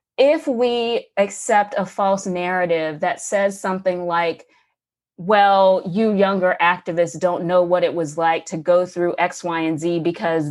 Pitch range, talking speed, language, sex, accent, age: 180-260 Hz, 160 wpm, English, female, American, 30-49